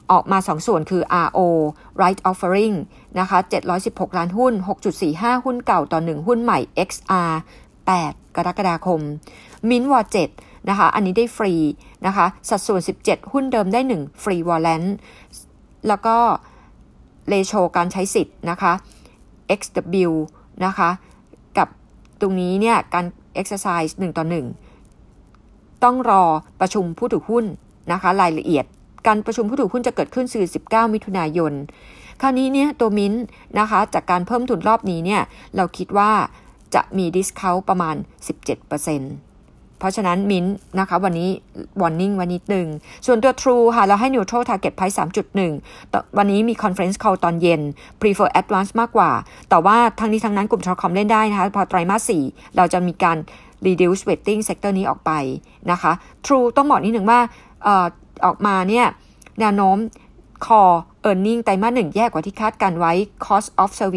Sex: female